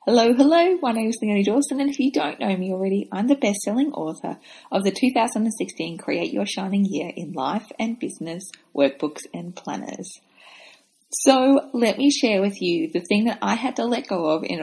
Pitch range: 175-245 Hz